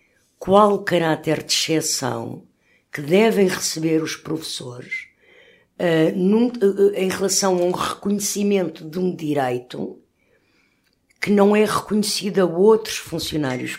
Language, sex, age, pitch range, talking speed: Portuguese, female, 60-79, 160-205 Hz, 120 wpm